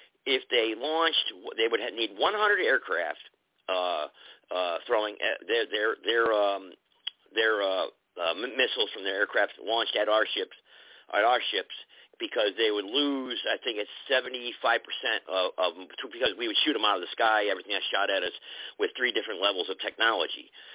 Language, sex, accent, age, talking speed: English, male, American, 50-69, 180 wpm